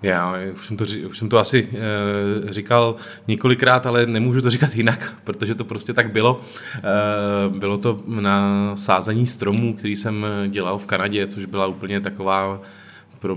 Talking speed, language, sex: 165 wpm, Czech, male